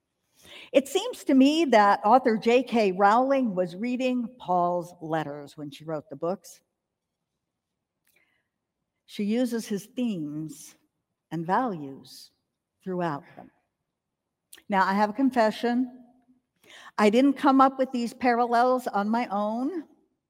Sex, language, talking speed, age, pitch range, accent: female, English, 120 wpm, 60-79, 185-255 Hz, American